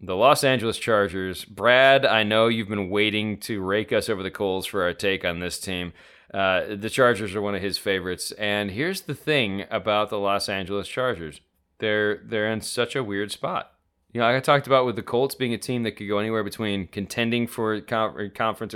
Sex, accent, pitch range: male, American, 95-120 Hz